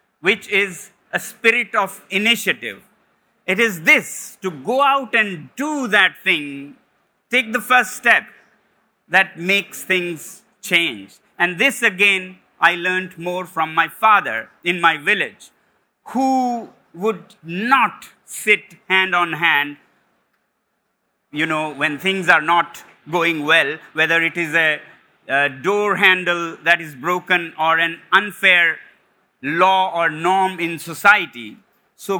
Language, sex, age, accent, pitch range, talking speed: English, male, 50-69, Indian, 170-220 Hz, 130 wpm